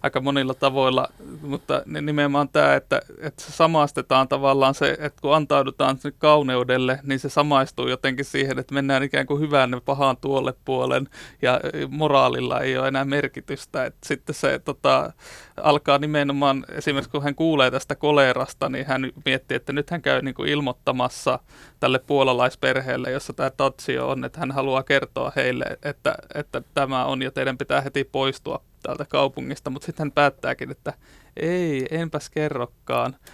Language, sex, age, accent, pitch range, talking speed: Finnish, male, 30-49, native, 130-145 Hz, 155 wpm